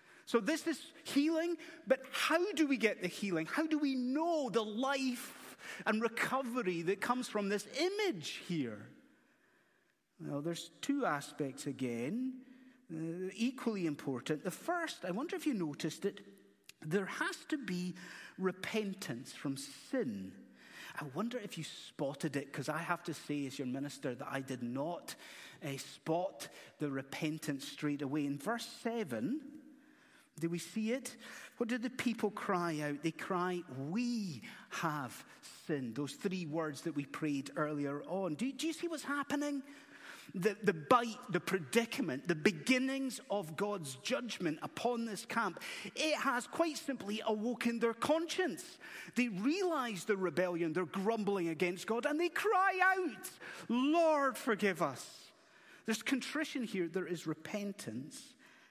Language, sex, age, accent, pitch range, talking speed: English, male, 30-49, British, 165-270 Hz, 150 wpm